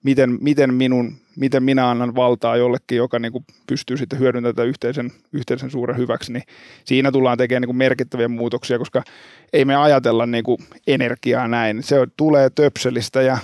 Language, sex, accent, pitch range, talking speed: Finnish, male, native, 120-140 Hz, 155 wpm